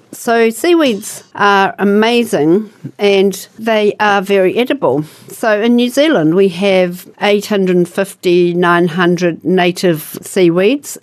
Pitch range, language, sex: 175-205 Hz, English, female